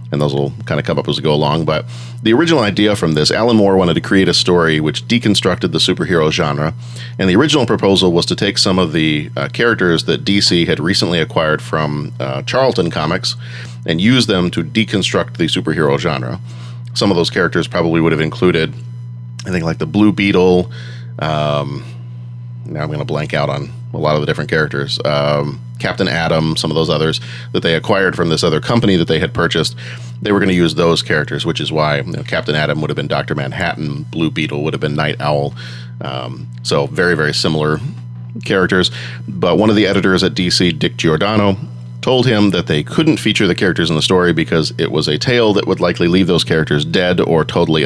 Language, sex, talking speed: English, male, 210 wpm